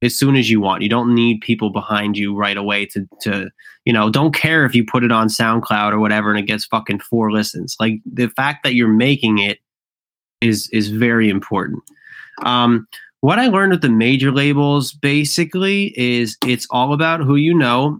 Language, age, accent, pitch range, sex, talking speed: English, 20-39, American, 110-140 Hz, male, 200 wpm